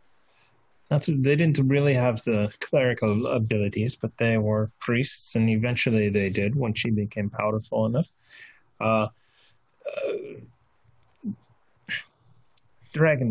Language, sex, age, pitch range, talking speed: English, male, 30-49, 110-130 Hz, 105 wpm